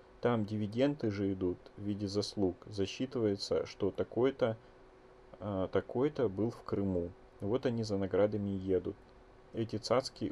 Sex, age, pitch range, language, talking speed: male, 30-49, 95-115 Hz, Russian, 130 wpm